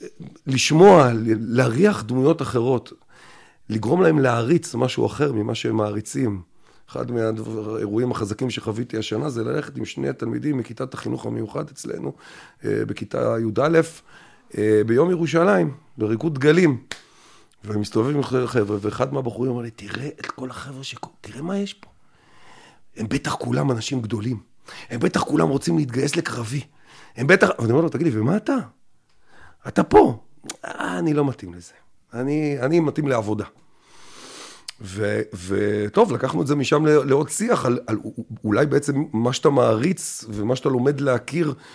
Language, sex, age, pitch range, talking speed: Hebrew, male, 40-59, 110-150 Hz, 140 wpm